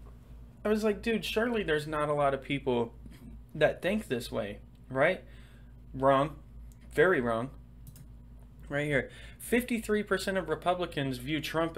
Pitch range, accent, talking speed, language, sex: 110-170 Hz, American, 130 wpm, English, male